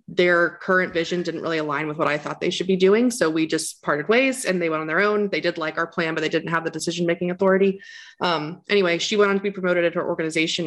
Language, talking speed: English, 275 wpm